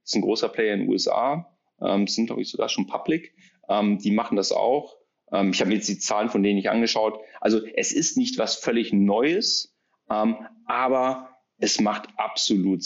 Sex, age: male, 30-49